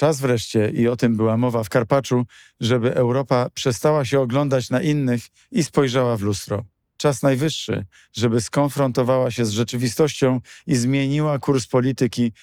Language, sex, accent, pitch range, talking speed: Polish, male, native, 115-130 Hz, 150 wpm